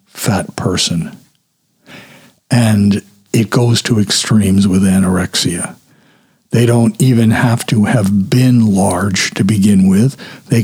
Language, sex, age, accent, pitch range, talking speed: English, male, 60-79, American, 105-125 Hz, 120 wpm